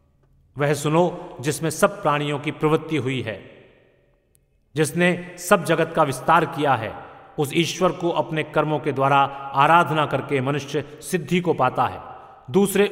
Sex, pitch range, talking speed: male, 145-180 Hz, 145 wpm